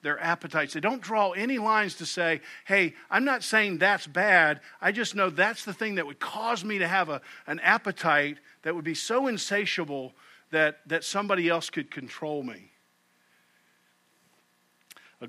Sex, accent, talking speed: male, American, 165 wpm